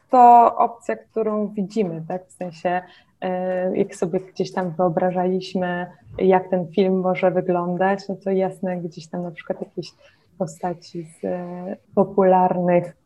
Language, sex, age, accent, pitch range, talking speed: Polish, female, 20-39, native, 170-200 Hz, 135 wpm